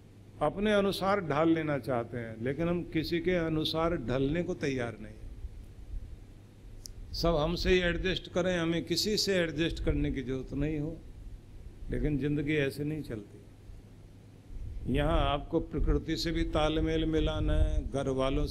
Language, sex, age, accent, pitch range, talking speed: Hindi, male, 50-69, native, 105-160 Hz, 145 wpm